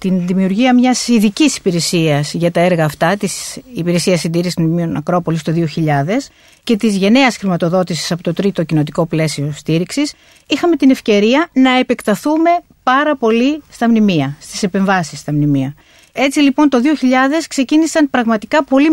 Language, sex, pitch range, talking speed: Greek, female, 185-270 Hz, 145 wpm